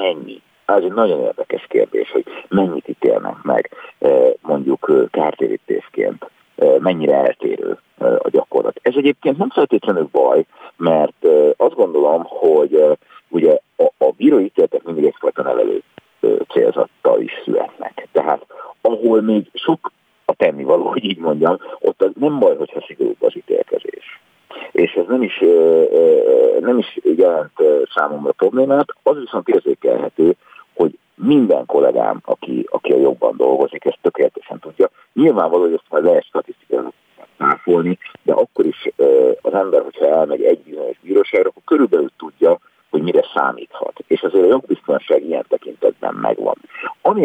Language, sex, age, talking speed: Hungarian, male, 50-69, 135 wpm